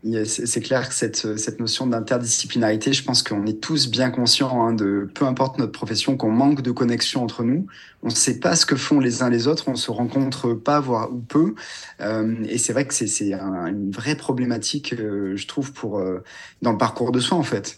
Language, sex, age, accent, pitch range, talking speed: French, male, 30-49, French, 110-140 Hz, 225 wpm